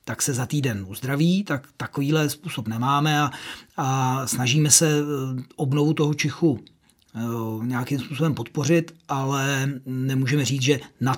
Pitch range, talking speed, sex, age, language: 135-155 Hz, 130 wpm, male, 40-59, Czech